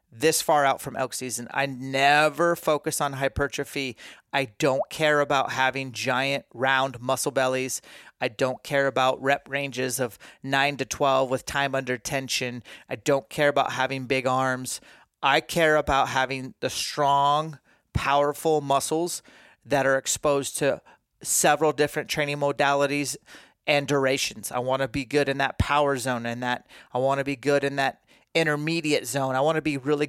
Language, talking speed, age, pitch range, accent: English, 170 wpm, 30-49, 135-155 Hz, American